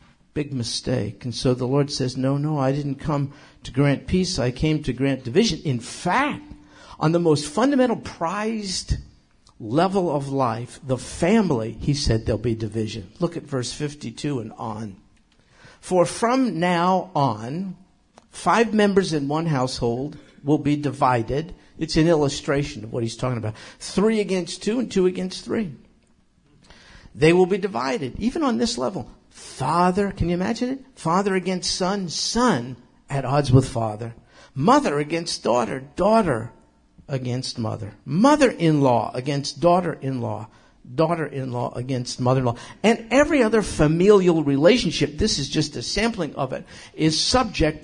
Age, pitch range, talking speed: 50-69, 125-175 Hz, 150 wpm